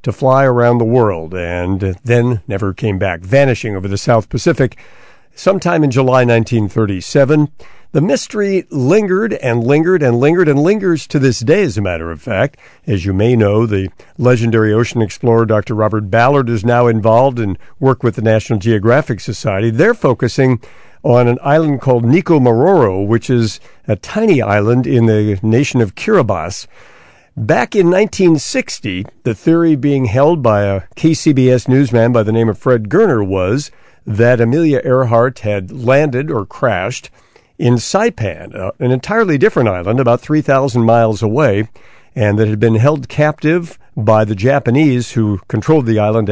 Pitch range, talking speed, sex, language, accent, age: 110-140 Hz, 160 wpm, male, English, American, 60-79